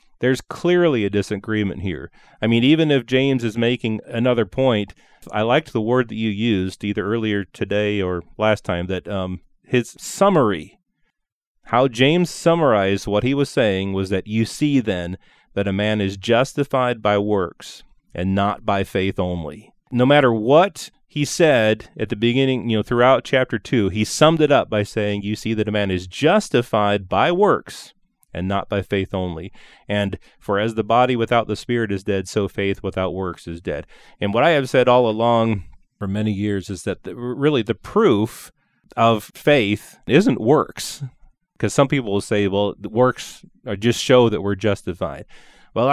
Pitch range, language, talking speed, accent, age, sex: 100-130 Hz, English, 180 wpm, American, 30-49, male